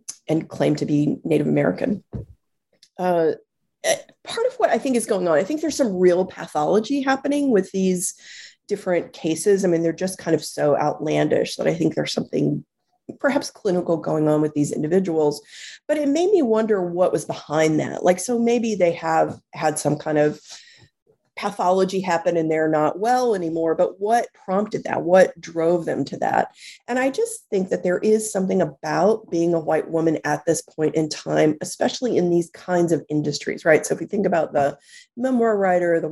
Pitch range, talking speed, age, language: 160-235 Hz, 190 wpm, 30-49, English